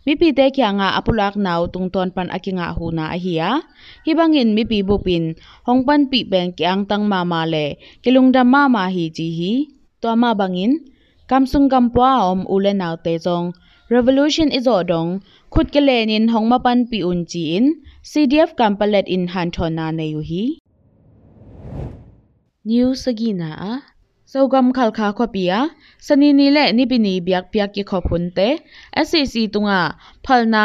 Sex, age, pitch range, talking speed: female, 20-39, 180-255 Hz, 135 wpm